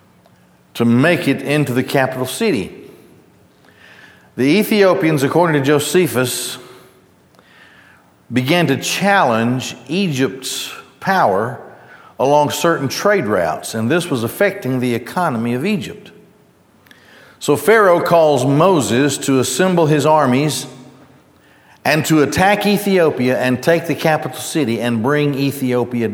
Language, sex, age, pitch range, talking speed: English, male, 50-69, 120-150 Hz, 110 wpm